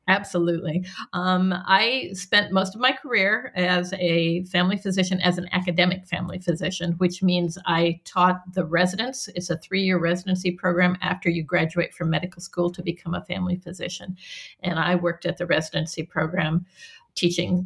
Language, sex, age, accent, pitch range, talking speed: English, female, 50-69, American, 175-190 Hz, 165 wpm